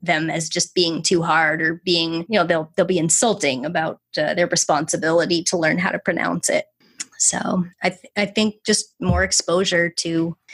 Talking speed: 180 wpm